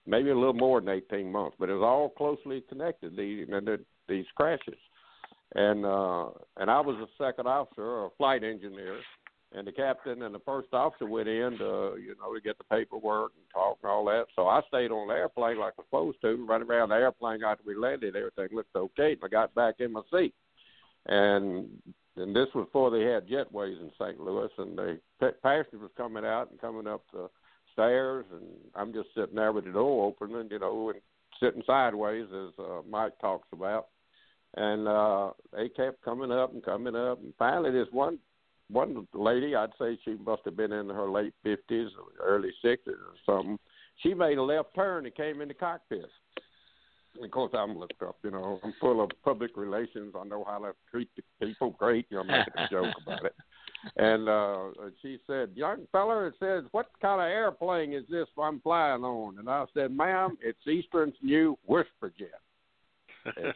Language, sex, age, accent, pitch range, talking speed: English, male, 60-79, American, 105-165 Hz, 195 wpm